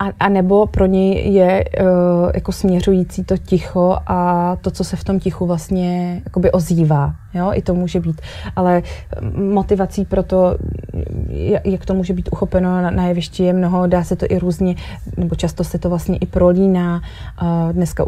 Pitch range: 175-200 Hz